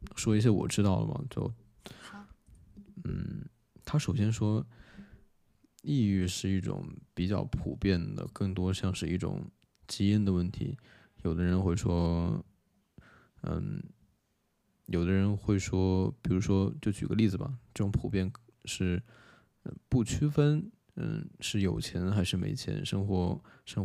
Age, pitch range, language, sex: 20-39, 95-110 Hz, Chinese, male